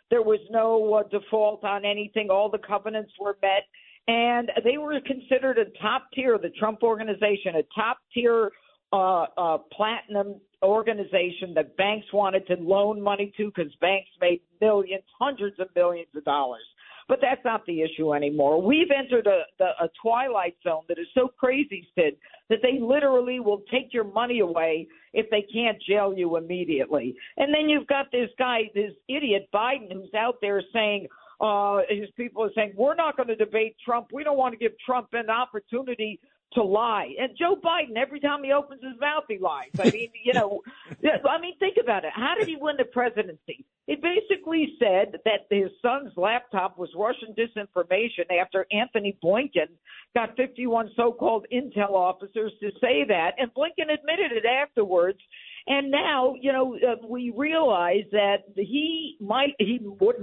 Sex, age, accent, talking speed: female, 50-69, American, 175 wpm